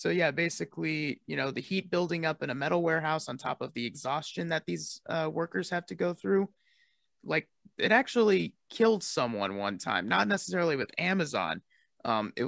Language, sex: English, male